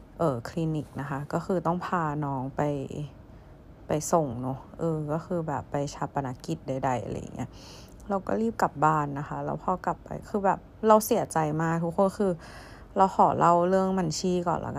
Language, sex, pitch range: Thai, female, 140-185 Hz